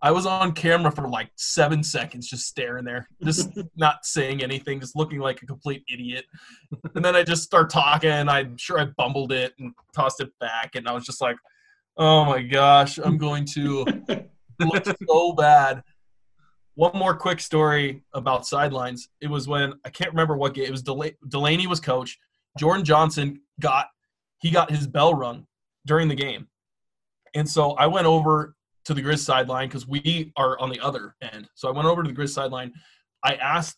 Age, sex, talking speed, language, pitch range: 20-39, male, 195 wpm, English, 135-160 Hz